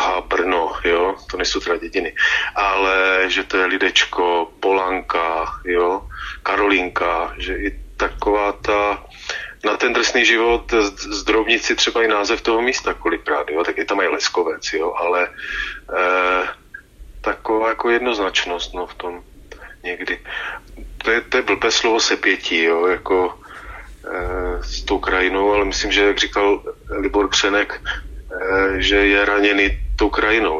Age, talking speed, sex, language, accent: 30-49, 130 wpm, male, Czech, native